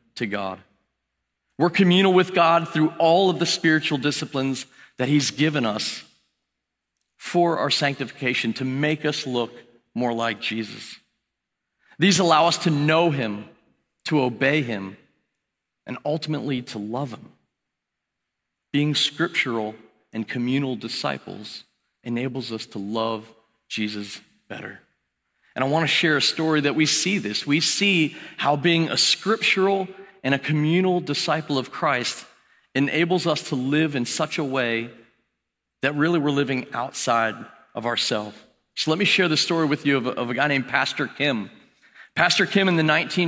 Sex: male